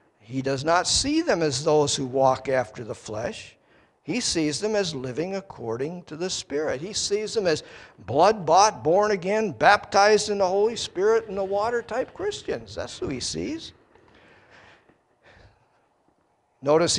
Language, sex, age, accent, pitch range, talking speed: English, male, 50-69, American, 140-210 Hz, 150 wpm